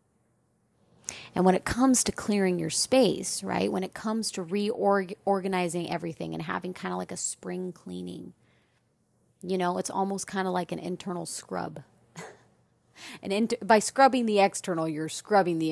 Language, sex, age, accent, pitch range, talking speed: English, female, 30-49, American, 160-190 Hz, 165 wpm